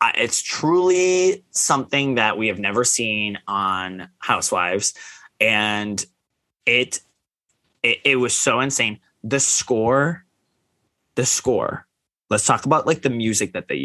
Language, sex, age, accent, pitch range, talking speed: English, male, 20-39, American, 105-145 Hz, 125 wpm